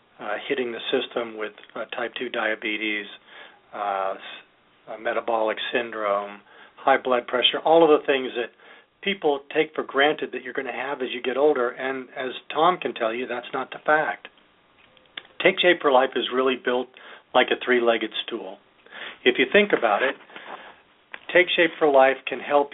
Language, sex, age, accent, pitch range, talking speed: English, male, 40-59, American, 120-150 Hz, 175 wpm